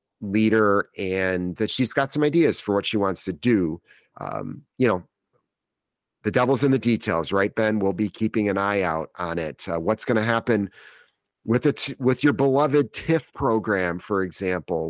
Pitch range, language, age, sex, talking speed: 100-125 Hz, English, 40-59, male, 180 wpm